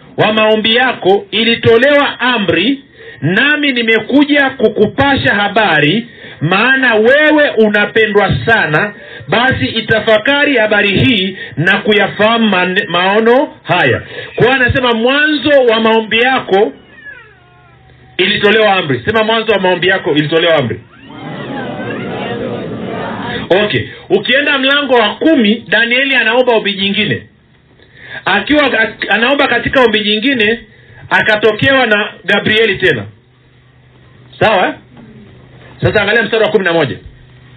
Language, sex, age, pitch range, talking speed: Swahili, male, 50-69, 180-240 Hz, 95 wpm